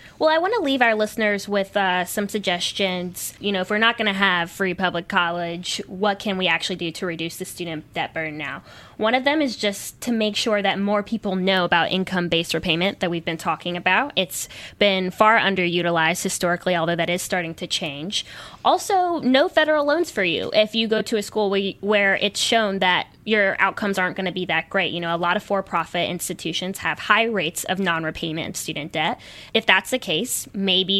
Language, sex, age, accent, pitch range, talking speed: English, female, 10-29, American, 175-215 Hz, 210 wpm